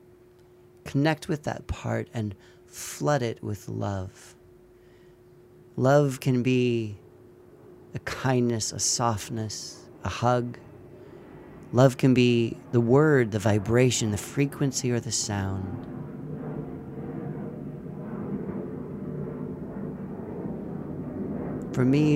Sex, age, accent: male, 30-49, American